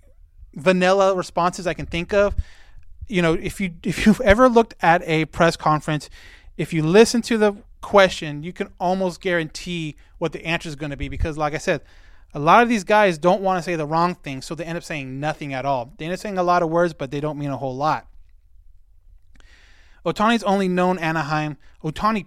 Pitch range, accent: 135-185 Hz, American